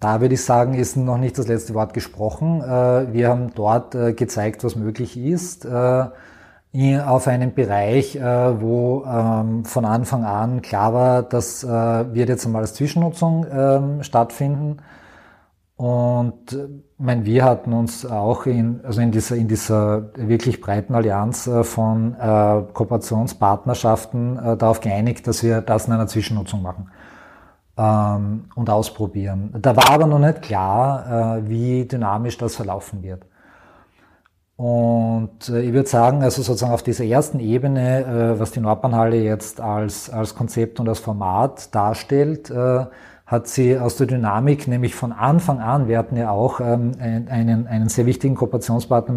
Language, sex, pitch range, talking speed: German, male, 110-125 Hz, 135 wpm